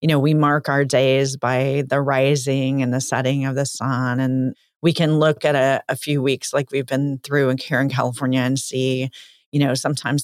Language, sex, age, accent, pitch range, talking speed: English, female, 40-59, American, 130-145 Hz, 215 wpm